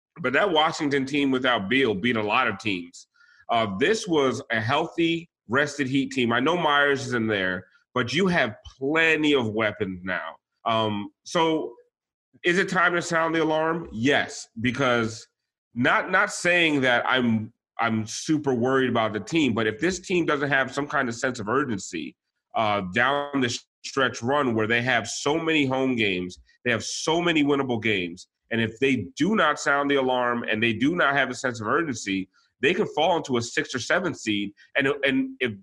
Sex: male